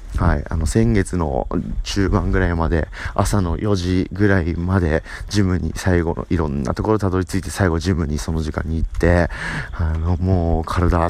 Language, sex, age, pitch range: Japanese, male, 30-49, 80-100 Hz